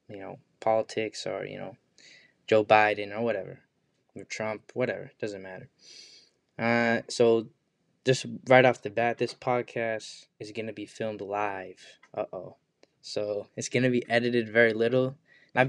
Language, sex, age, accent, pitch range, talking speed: English, male, 10-29, American, 110-125 Hz, 155 wpm